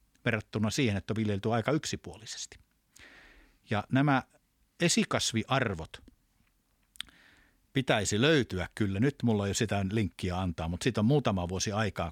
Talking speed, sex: 125 wpm, male